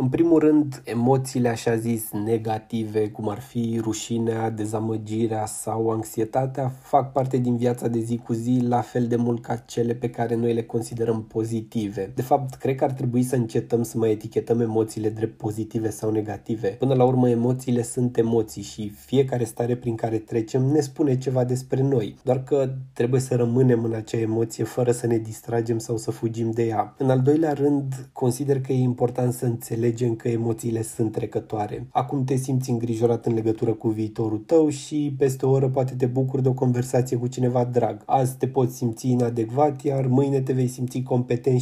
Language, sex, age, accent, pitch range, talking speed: Romanian, male, 20-39, native, 115-130 Hz, 190 wpm